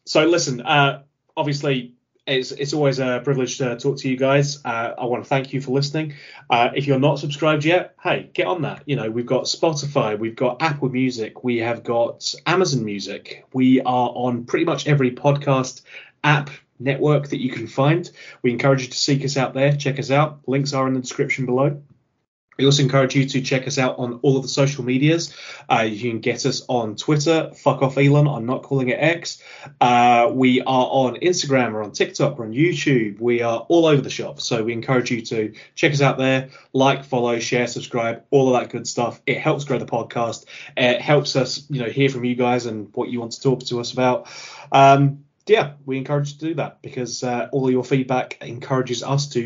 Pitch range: 125-140 Hz